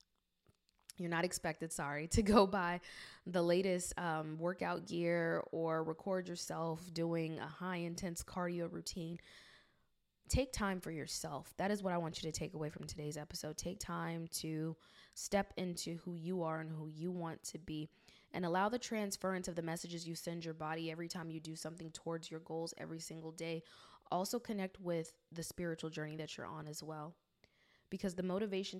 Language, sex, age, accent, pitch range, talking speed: English, female, 20-39, American, 160-180 Hz, 180 wpm